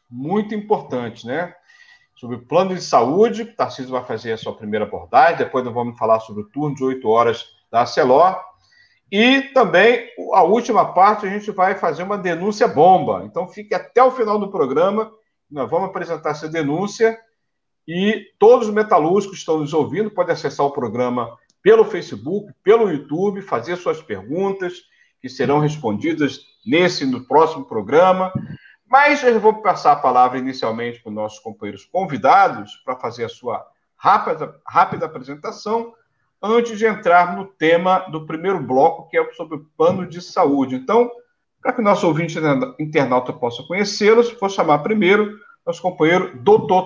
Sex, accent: male, Brazilian